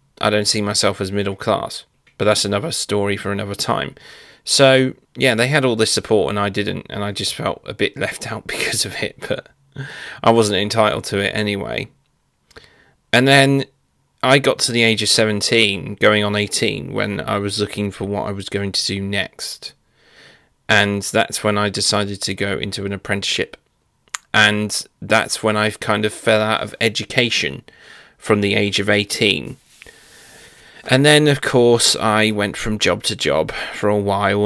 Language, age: English, 30-49